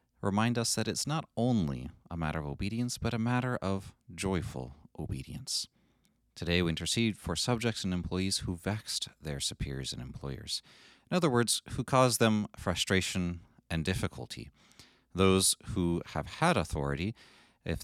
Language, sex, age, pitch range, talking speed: English, male, 30-49, 80-100 Hz, 150 wpm